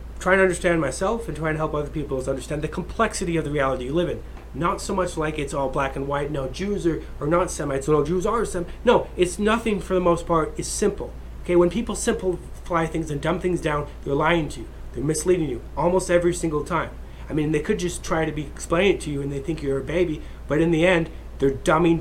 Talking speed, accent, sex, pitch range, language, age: 255 wpm, American, male, 105-170 Hz, English, 30-49